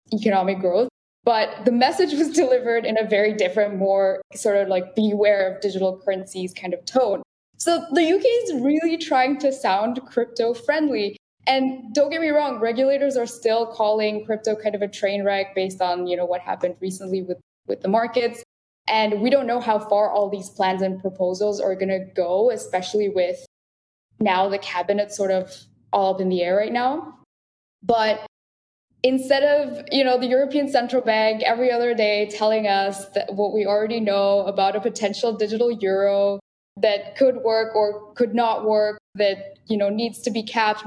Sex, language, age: female, English, 10-29